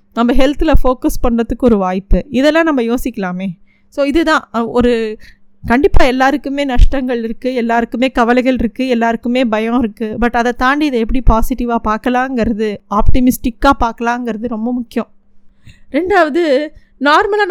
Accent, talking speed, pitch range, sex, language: native, 120 wpm, 225-280 Hz, female, Tamil